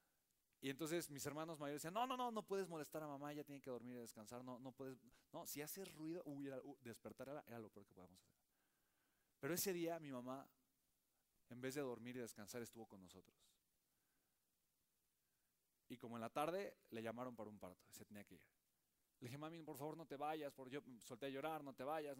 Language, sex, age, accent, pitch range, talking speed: Spanish, male, 30-49, Mexican, 115-150 Hz, 220 wpm